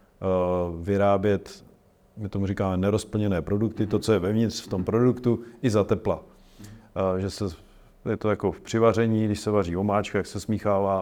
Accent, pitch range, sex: native, 100-110 Hz, male